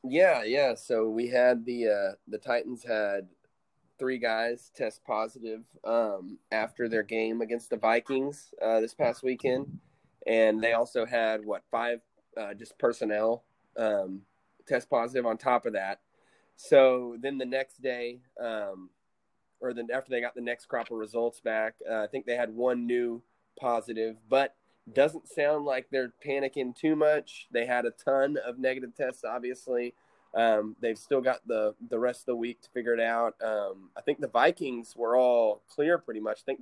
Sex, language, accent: male, English, American